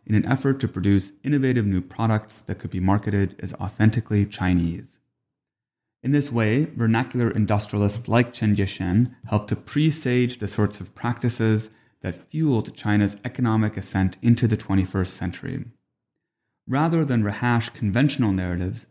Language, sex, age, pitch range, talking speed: English, male, 30-49, 100-120 Hz, 140 wpm